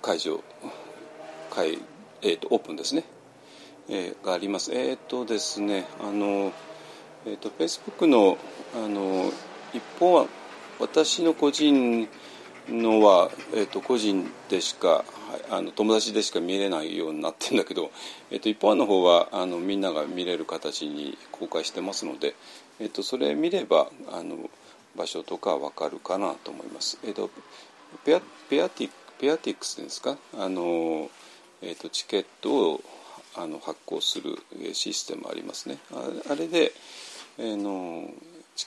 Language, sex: Japanese, male